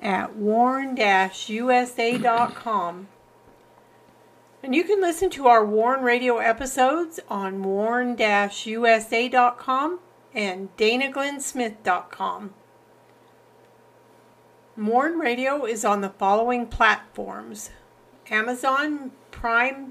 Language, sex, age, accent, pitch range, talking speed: English, female, 50-69, American, 225-275 Hz, 70 wpm